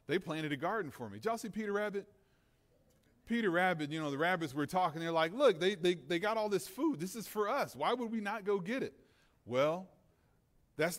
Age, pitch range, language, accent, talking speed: 30-49, 125-175 Hz, English, American, 230 wpm